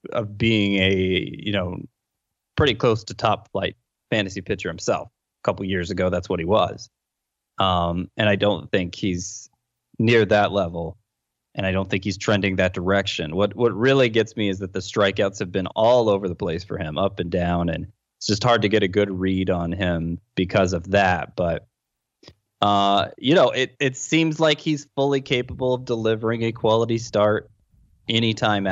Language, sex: English, male